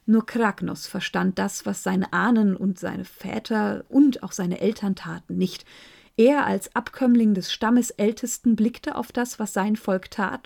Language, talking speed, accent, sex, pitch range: German, 165 wpm, German, female, 195-240 Hz